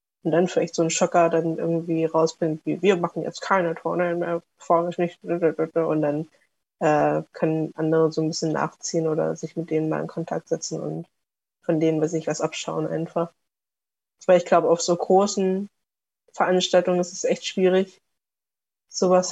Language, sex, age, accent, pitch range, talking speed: German, female, 20-39, German, 155-170 Hz, 175 wpm